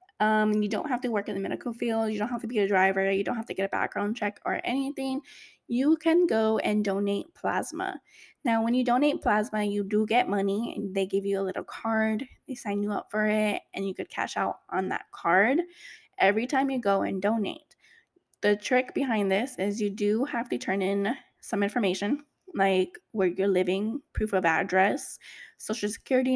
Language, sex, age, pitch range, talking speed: English, female, 10-29, 200-245 Hz, 205 wpm